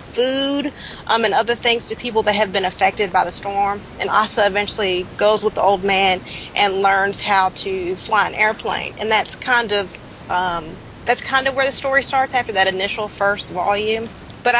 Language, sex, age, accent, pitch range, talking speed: English, female, 30-49, American, 195-245 Hz, 195 wpm